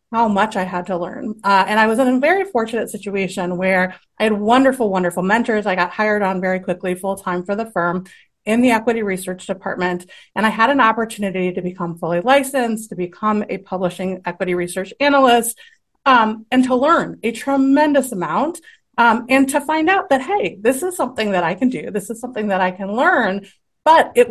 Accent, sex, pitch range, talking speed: American, female, 190-250 Hz, 200 wpm